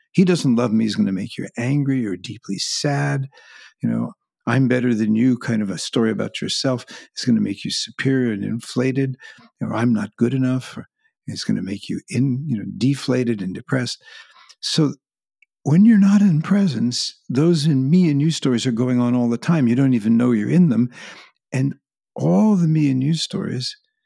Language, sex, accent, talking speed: English, male, American, 200 wpm